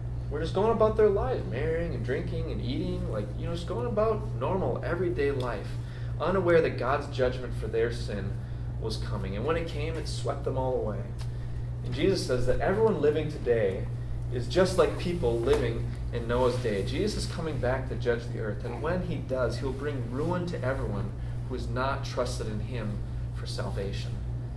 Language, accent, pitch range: English, American, 115-125 Hz